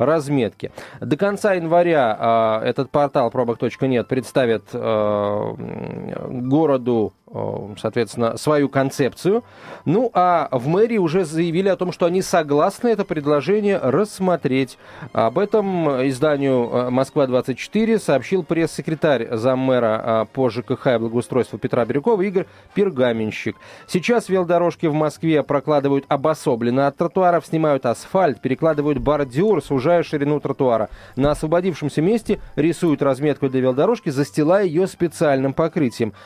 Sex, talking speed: male, 120 wpm